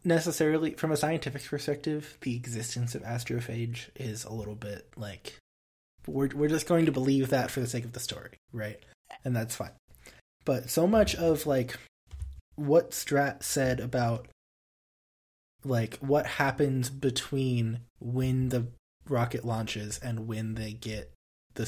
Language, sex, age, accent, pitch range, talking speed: English, male, 20-39, American, 110-135 Hz, 145 wpm